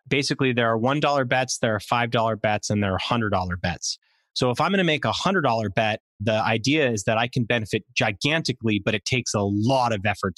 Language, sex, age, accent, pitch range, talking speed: English, male, 30-49, American, 110-130 Hz, 220 wpm